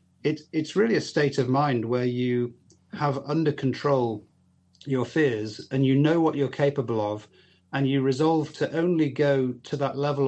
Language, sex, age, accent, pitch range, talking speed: English, male, 40-59, British, 120-145 Hz, 175 wpm